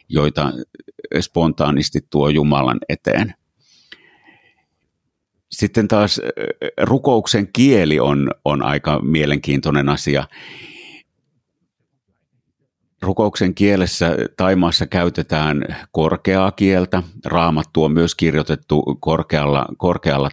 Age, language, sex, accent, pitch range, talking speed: 50-69, Finnish, male, native, 75-105 Hz, 75 wpm